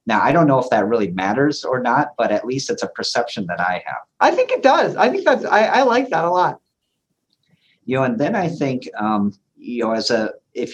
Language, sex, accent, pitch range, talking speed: English, male, American, 100-140 Hz, 245 wpm